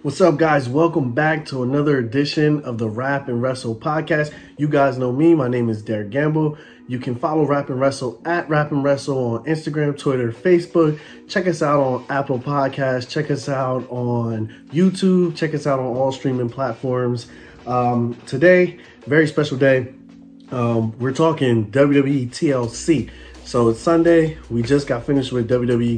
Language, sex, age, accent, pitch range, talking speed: English, male, 20-39, American, 125-150 Hz, 170 wpm